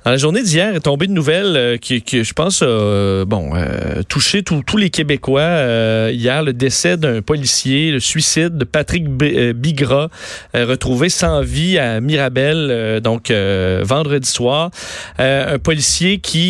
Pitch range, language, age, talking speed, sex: 125-155 Hz, French, 40-59, 175 wpm, male